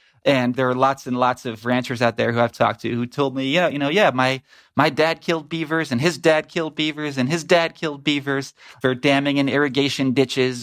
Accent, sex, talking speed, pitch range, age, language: American, male, 235 wpm, 115-135 Hz, 30-49, English